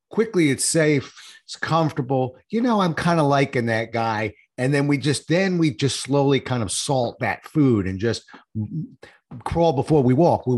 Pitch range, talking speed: 135-190 Hz, 185 wpm